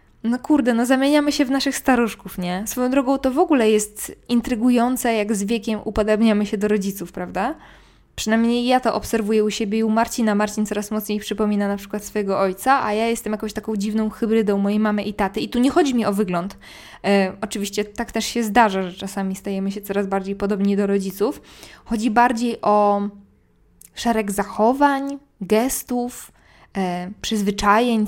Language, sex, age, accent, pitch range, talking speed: Polish, female, 20-39, native, 195-230 Hz, 175 wpm